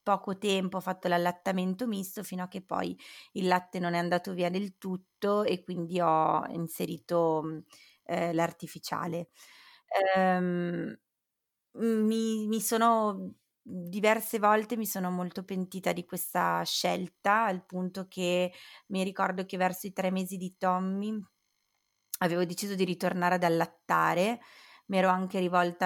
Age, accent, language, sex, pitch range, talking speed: 20-39, native, Italian, female, 175-190 Hz, 135 wpm